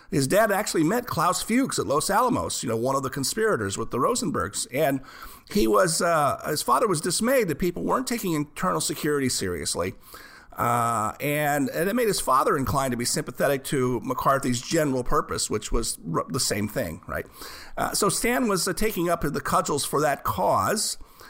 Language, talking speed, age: English, 190 wpm, 50-69